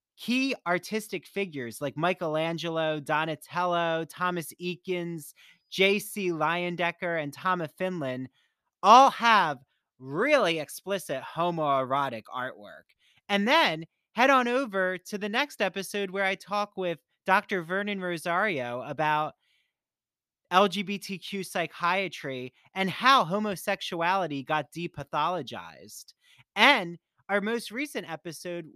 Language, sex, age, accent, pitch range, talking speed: English, male, 30-49, American, 155-205 Hz, 100 wpm